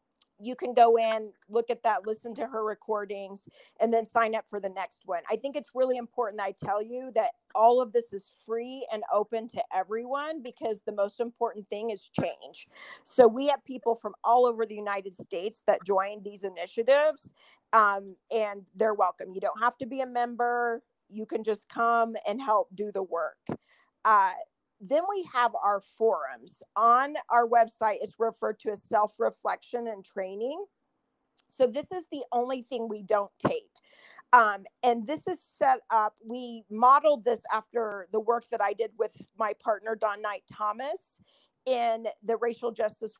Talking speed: 175 wpm